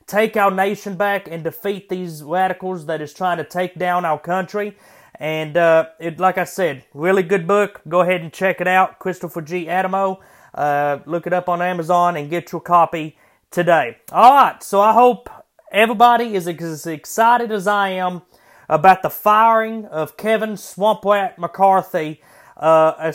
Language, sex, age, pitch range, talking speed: English, male, 30-49, 175-220 Hz, 170 wpm